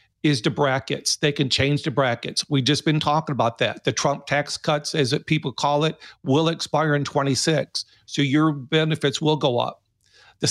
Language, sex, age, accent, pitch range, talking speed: English, male, 50-69, American, 130-155 Hz, 190 wpm